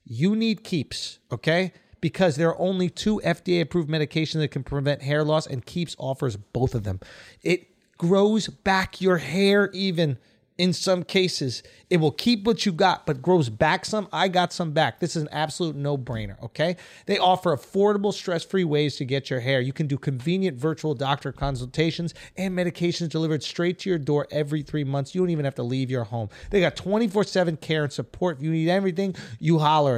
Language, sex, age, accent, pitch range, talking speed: English, male, 30-49, American, 140-185 Hz, 195 wpm